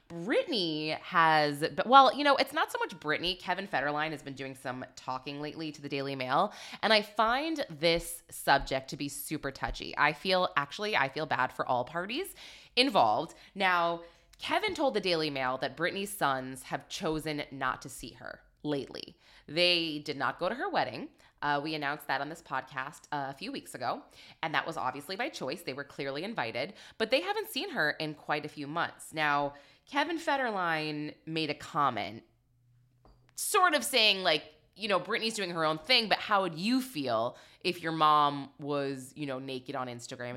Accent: American